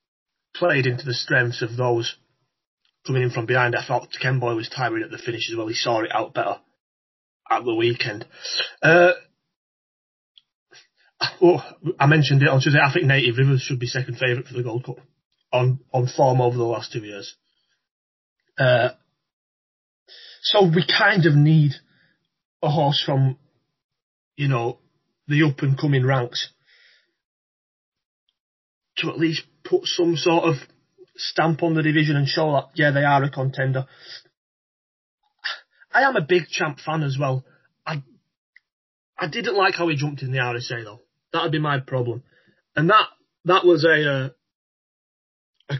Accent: British